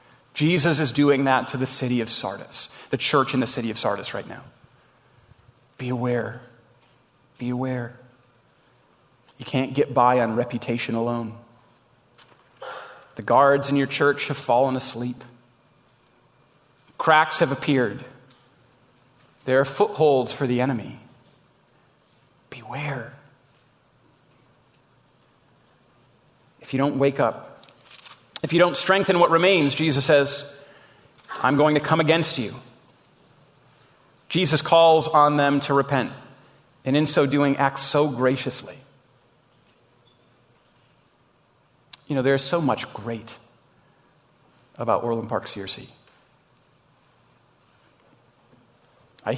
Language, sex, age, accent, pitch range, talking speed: English, male, 30-49, American, 120-145 Hz, 110 wpm